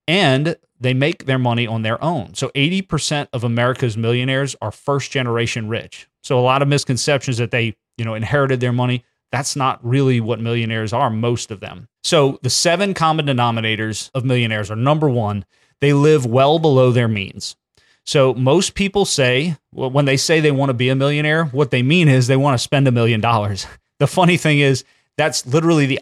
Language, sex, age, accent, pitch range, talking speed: English, male, 30-49, American, 120-145 Hz, 195 wpm